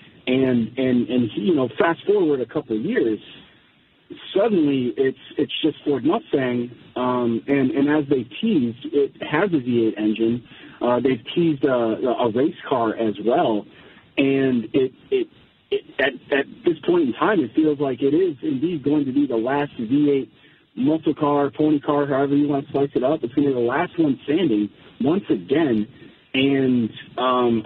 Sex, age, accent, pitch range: male, 40-59, American, 125-155 Hz